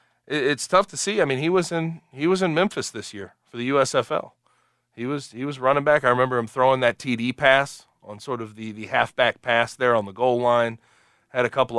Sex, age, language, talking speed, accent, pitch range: male, 30-49, English, 235 wpm, American, 115-145 Hz